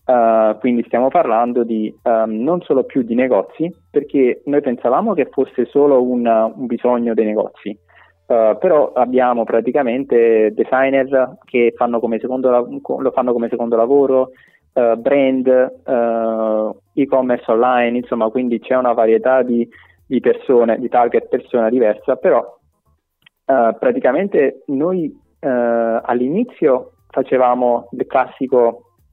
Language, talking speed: Italian, 130 wpm